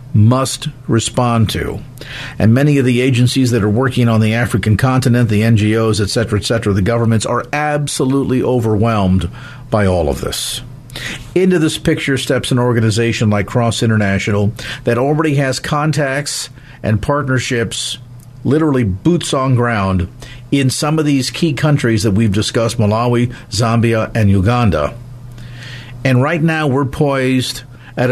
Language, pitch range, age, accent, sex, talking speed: English, 110-130 Hz, 50-69, American, male, 145 wpm